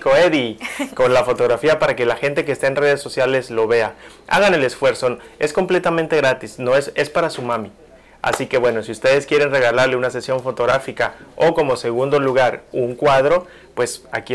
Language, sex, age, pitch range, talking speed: Spanish, male, 30-49, 130-160 Hz, 190 wpm